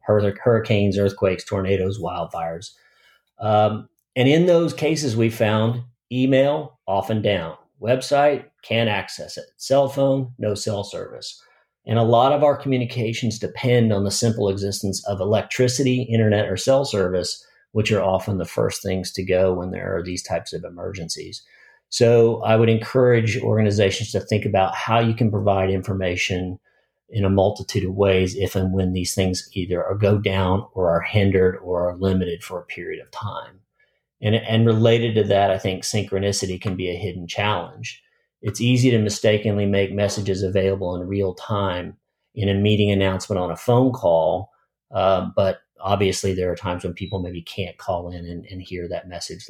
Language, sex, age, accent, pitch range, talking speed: English, male, 40-59, American, 95-115 Hz, 170 wpm